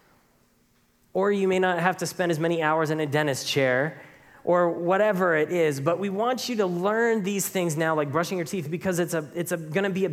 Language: English